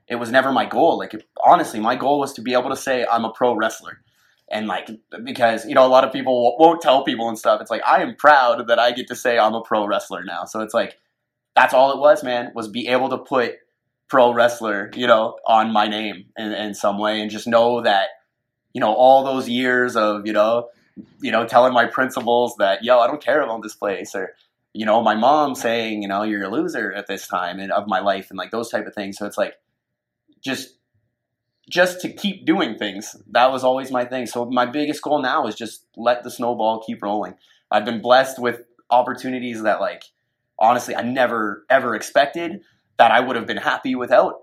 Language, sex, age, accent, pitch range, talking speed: English, male, 20-39, American, 110-130 Hz, 225 wpm